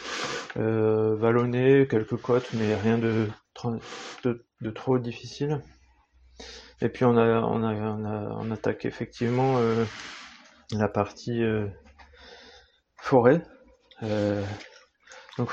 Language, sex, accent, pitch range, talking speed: French, male, French, 105-120 Hz, 110 wpm